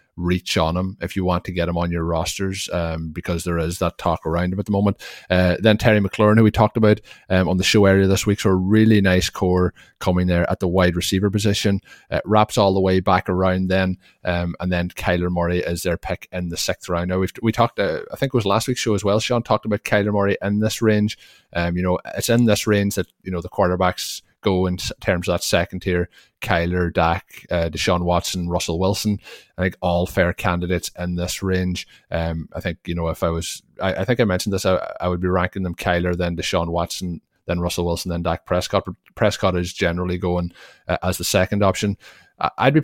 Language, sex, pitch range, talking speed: English, male, 90-100 Hz, 235 wpm